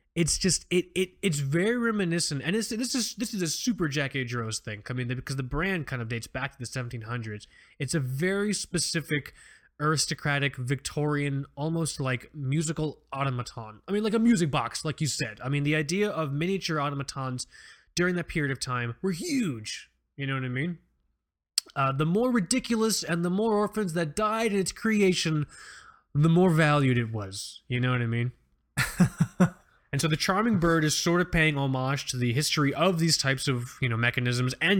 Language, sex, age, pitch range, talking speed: English, male, 20-39, 125-175 Hz, 195 wpm